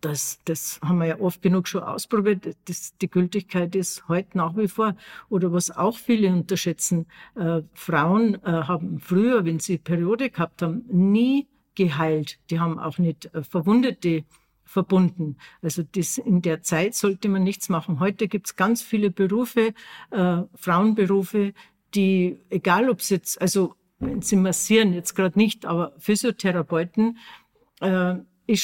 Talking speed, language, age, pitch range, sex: 155 wpm, German, 60-79, 170-205 Hz, female